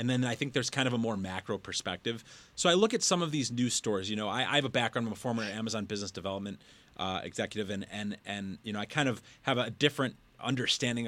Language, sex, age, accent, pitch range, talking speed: English, male, 30-49, American, 110-135 Hz, 255 wpm